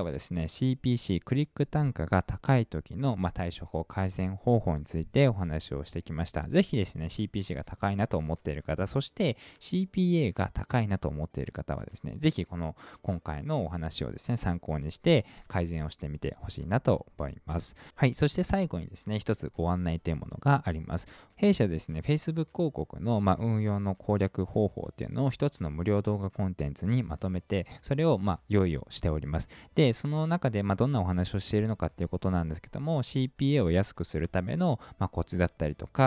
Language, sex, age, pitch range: Japanese, male, 20-39, 85-130 Hz